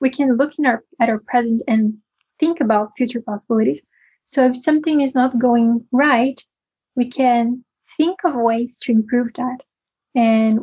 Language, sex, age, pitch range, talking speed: English, female, 10-29, 225-260 Hz, 165 wpm